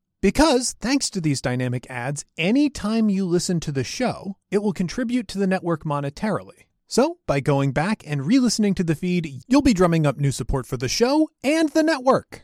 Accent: American